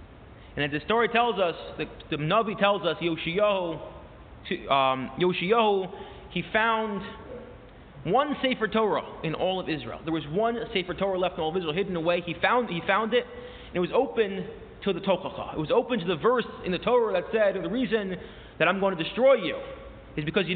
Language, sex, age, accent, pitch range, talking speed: English, male, 30-49, American, 190-260 Hz, 205 wpm